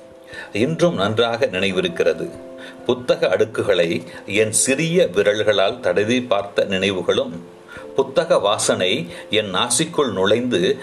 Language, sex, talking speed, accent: Tamil, male, 60 wpm, native